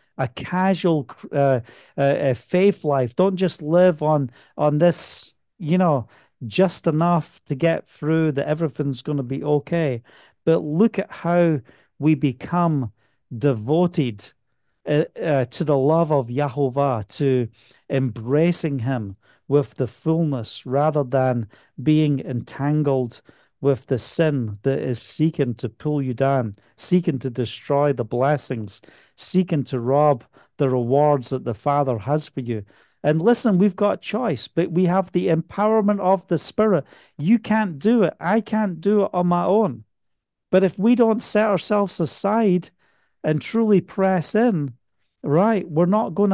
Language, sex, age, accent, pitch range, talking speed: English, male, 50-69, British, 135-180 Hz, 150 wpm